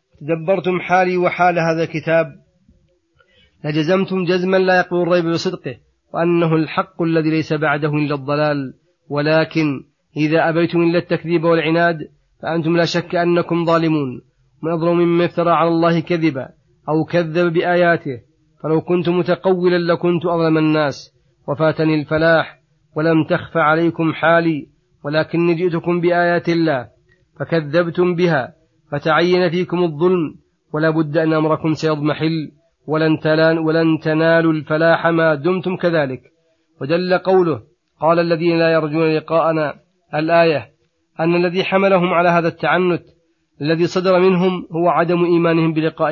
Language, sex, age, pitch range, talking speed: Arabic, male, 30-49, 155-175 Hz, 120 wpm